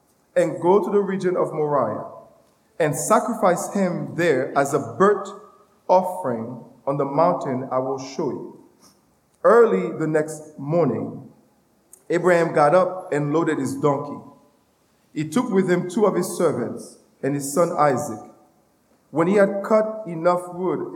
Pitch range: 140-185 Hz